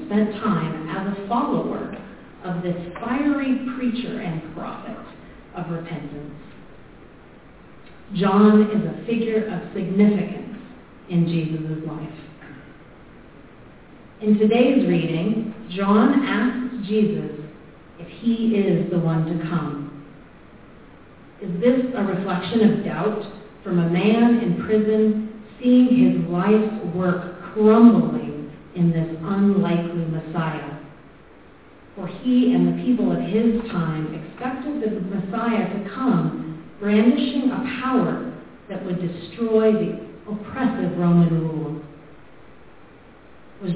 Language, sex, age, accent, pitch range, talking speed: English, female, 40-59, American, 170-220 Hz, 110 wpm